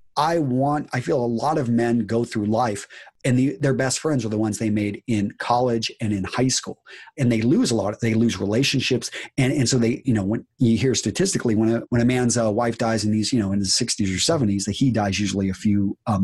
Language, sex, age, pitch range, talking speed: English, male, 30-49, 110-140 Hz, 260 wpm